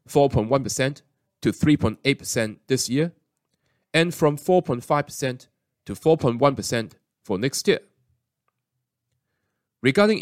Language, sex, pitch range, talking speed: English, male, 120-150 Hz, 75 wpm